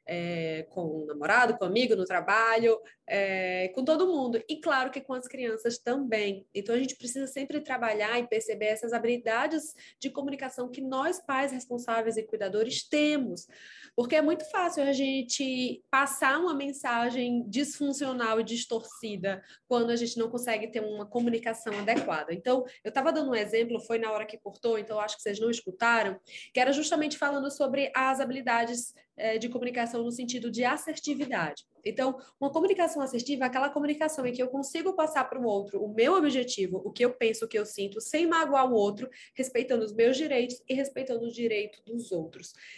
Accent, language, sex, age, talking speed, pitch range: Brazilian, Portuguese, female, 20-39, 180 wpm, 225-280 Hz